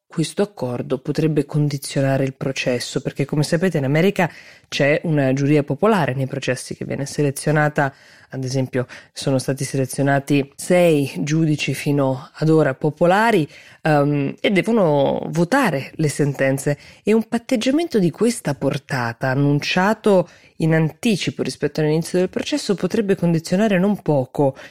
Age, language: 20-39, Italian